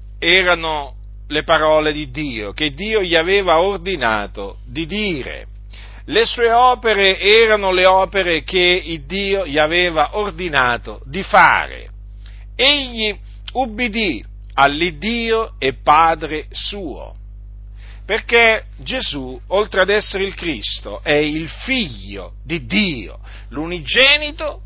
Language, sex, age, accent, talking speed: Italian, male, 50-69, native, 105 wpm